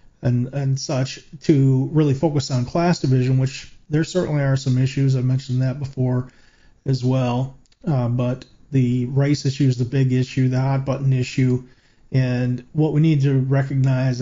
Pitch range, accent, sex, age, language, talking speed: 125-145 Hz, American, male, 40-59, English, 170 wpm